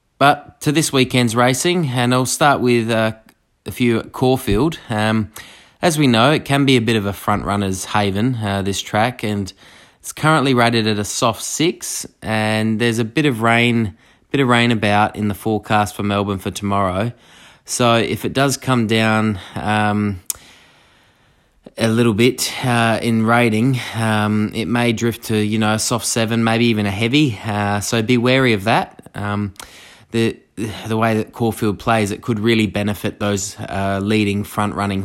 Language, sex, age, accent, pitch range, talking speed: English, male, 20-39, Australian, 105-125 Hz, 180 wpm